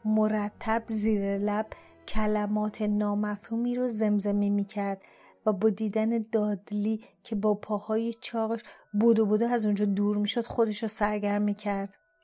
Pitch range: 210-235 Hz